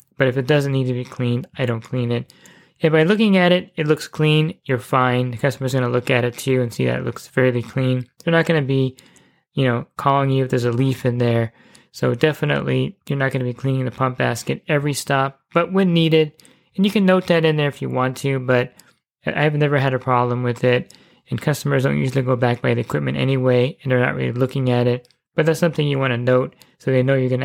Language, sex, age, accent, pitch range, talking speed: English, male, 20-39, American, 125-145 Hz, 255 wpm